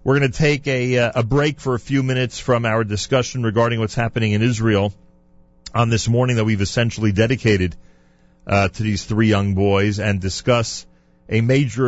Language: English